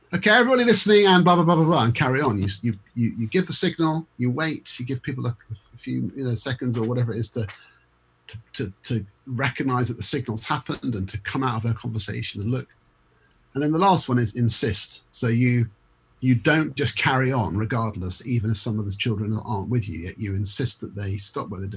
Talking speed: 225 wpm